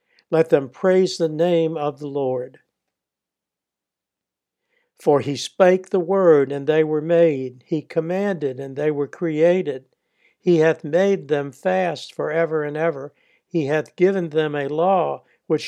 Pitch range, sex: 145-185 Hz, male